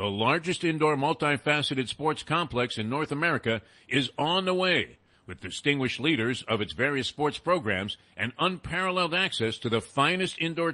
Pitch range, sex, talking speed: 115-165 Hz, male, 155 wpm